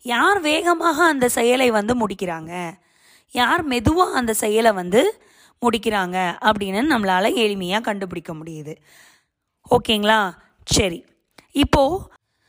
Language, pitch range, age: Tamil, 200-290 Hz, 20-39